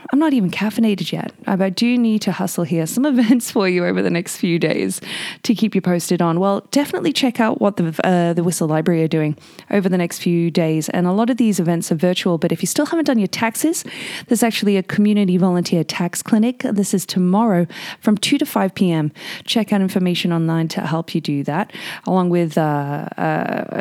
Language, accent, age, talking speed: English, Australian, 20-39, 215 wpm